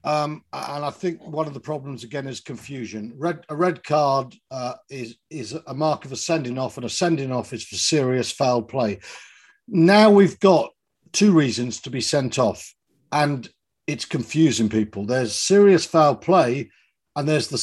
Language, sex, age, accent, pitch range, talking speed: English, male, 50-69, British, 135-180 Hz, 180 wpm